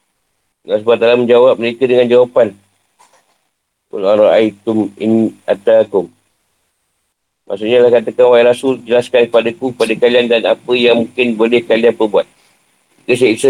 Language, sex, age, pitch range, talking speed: Malay, male, 50-69, 115-140 Hz, 110 wpm